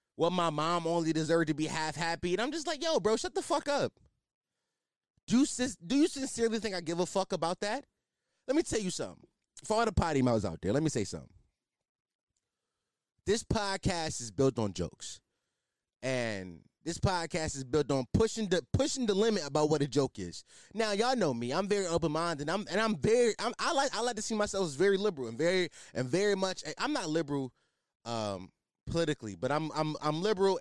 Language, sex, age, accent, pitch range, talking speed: English, male, 20-39, American, 140-205 Hz, 210 wpm